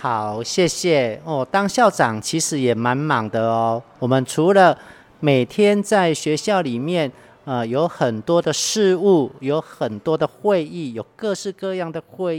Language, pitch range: Chinese, 125-170 Hz